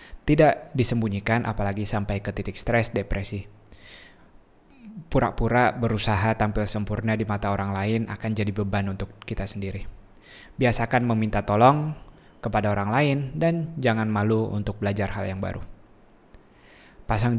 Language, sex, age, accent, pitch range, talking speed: Indonesian, male, 20-39, native, 100-120 Hz, 130 wpm